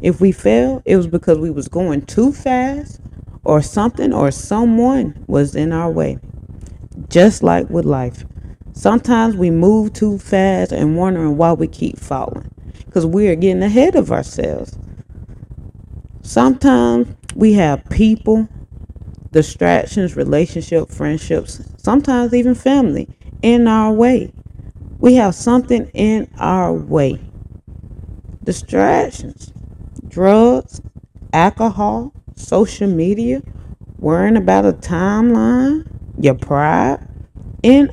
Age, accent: 30-49, American